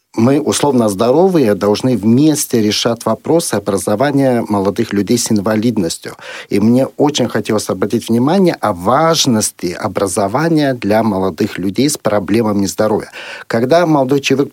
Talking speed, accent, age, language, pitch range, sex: 125 wpm, native, 50-69, Russian, 110-140 Hz, male